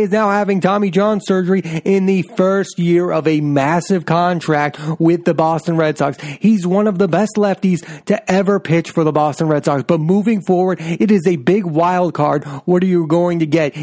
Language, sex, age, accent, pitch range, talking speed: English, male, 30-49, American, 155-190 Hz, 210 wpm